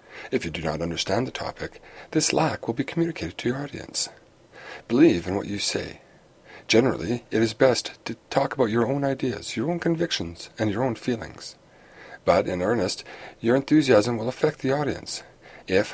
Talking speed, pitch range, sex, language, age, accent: 175 wpm, 115-155 Hz, male, English, 50-69, American